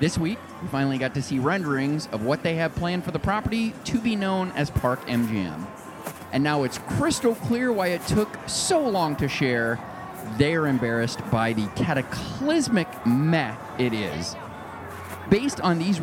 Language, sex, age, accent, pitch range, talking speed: English, male, 30-49, American, 115-180 Hz, 170 wpm